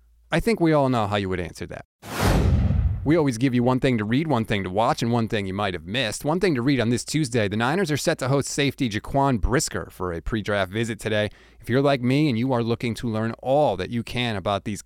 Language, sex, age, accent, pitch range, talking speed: English, male, 30-49, American, 100-155 Hz, 265 wpm